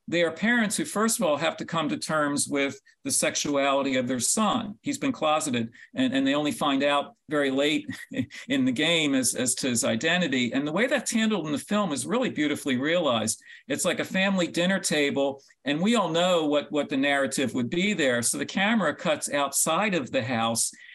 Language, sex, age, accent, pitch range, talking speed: English, male, 50-69, American, 150-250 Hz, 210 wpm